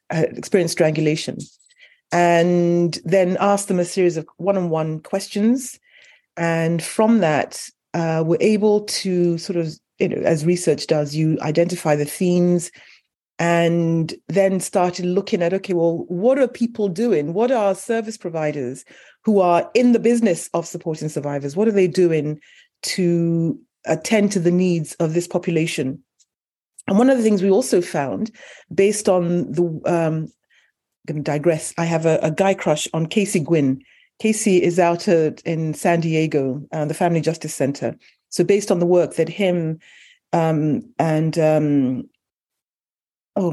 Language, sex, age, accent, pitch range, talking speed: English, female, 30-49, British, 155-195 Hz, 155 wpm